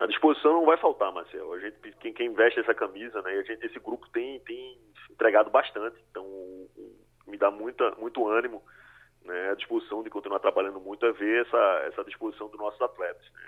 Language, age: Portuguese, 20-39